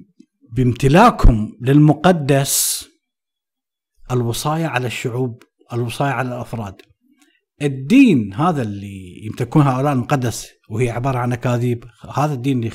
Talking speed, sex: 100 wpm, male